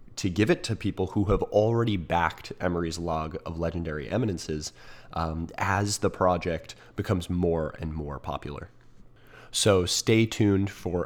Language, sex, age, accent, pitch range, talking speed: English, male, 30-49, American, 80-110 Hz, 145 wpm